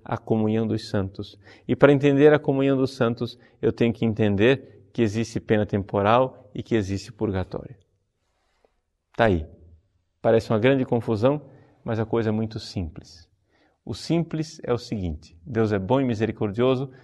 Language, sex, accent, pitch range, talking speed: Portuguese, male, Brazilian, 110-150 Hz, 160 wpm